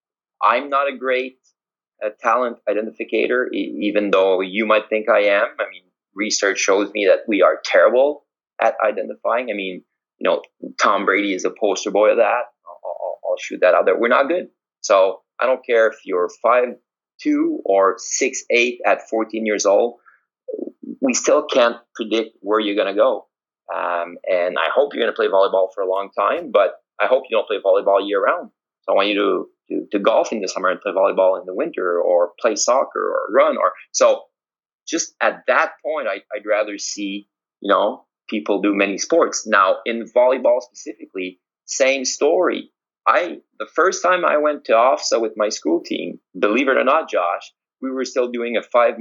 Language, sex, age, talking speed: English, male, 30-49, 195 wpm